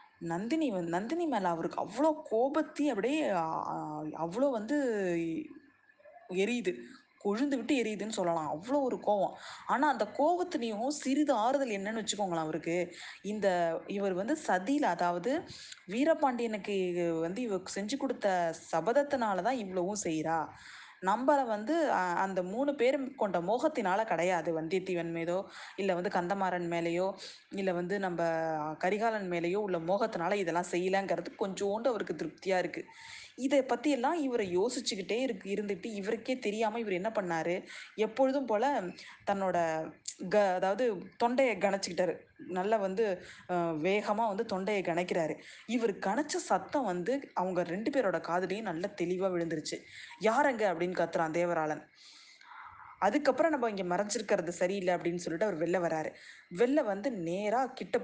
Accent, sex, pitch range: native, female, 175-245 Hz